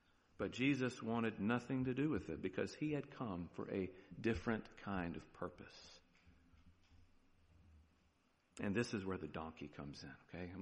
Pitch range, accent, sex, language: 90-135 Hz, American, male, English